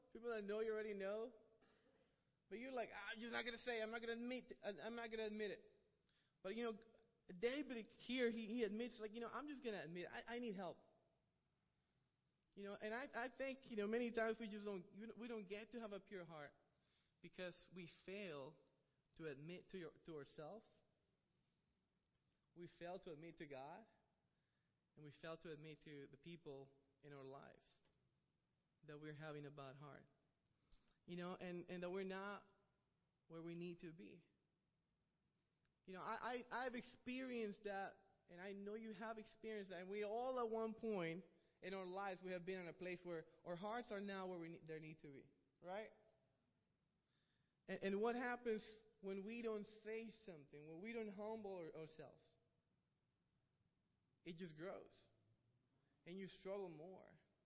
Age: 20-39